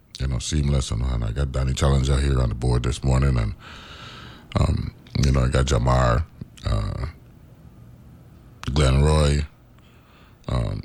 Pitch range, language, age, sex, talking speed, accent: 75-90 Hz, English, 30-49, male, 140 wpm, American